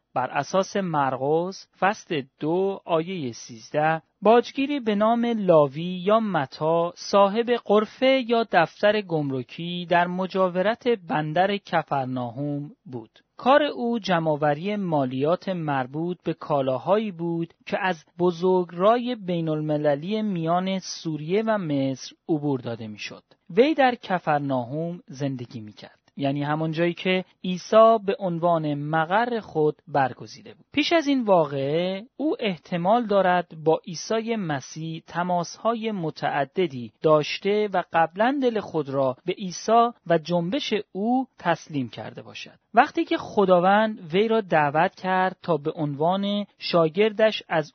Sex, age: male, 40-59